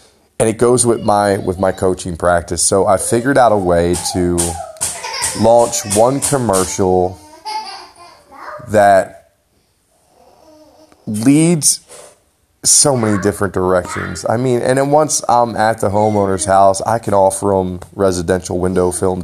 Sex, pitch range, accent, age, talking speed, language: male, 95-115 Hz, American, 30-49, 130 wpm, English